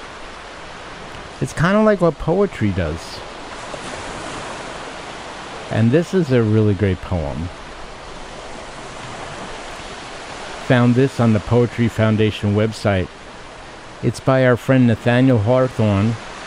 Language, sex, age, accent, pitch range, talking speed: English, male, 50-69, American, 110-130 Hz, 100 wpm